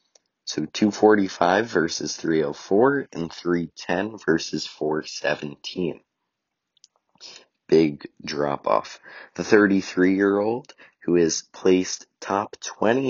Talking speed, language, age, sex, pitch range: 80 wpm, English, 30-49, male, 75-95 Hz